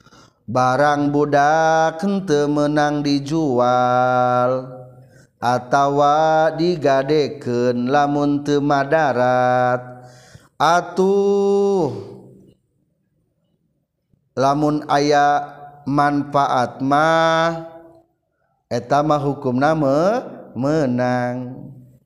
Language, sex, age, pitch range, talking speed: Indonesian, male, 40-59, 130-175 Hz, 45 wpm